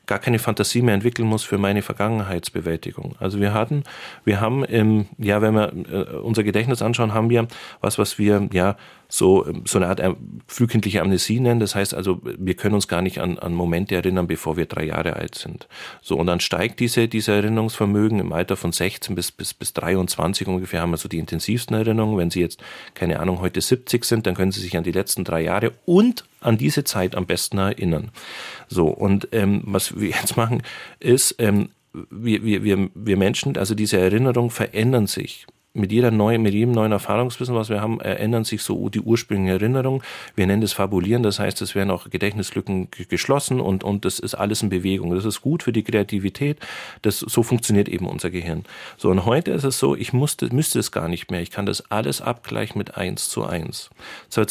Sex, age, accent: male, 40-59, German